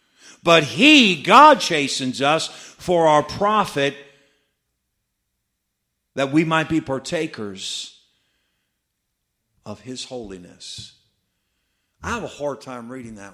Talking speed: 105 wpm